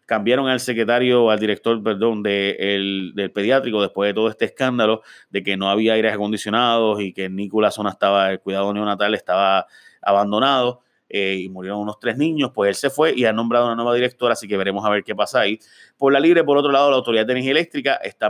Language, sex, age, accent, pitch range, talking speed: Spanish, male, 30-49, Venezuelan, 105-130 Hz, 225 wpm